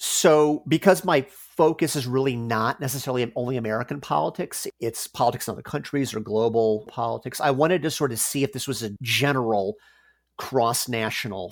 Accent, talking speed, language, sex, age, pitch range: American, 160 wpm, English, male, 40-59, 115-145 Hz